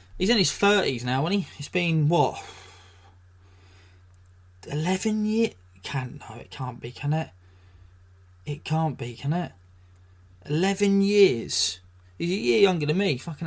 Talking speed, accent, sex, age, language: 145 wpm, British, male, 20-39, English